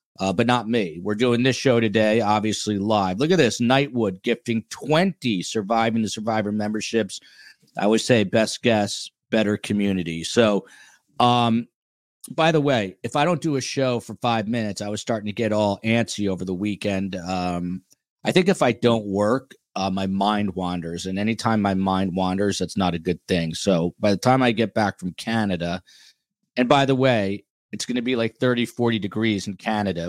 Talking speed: 190 wpm